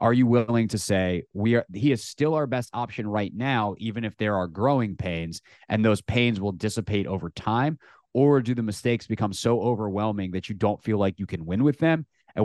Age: 30-49